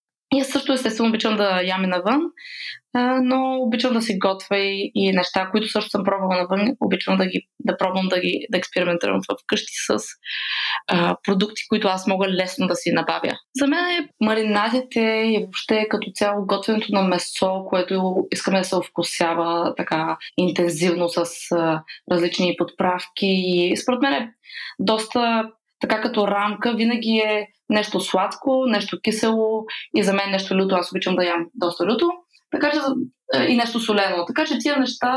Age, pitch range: 20-39, 185-245 Hz